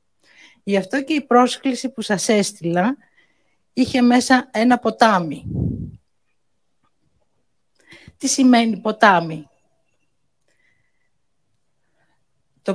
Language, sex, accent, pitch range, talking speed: Greek, female, native, 180-255 Hz, 75 wpm